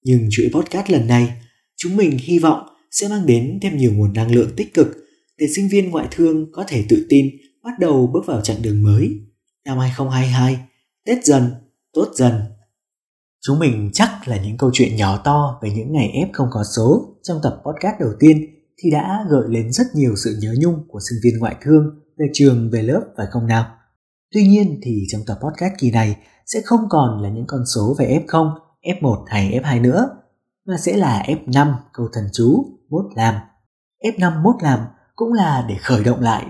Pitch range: 115-155 Hz